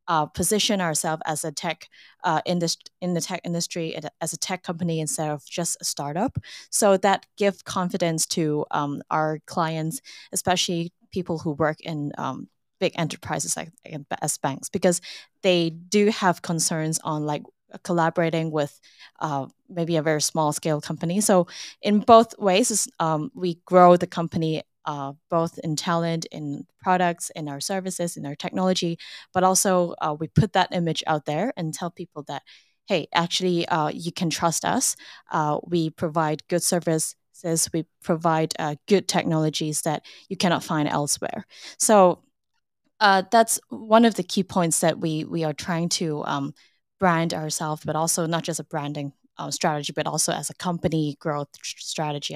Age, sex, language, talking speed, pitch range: 20-39, female, English, 165 wpm, 155-185 Hz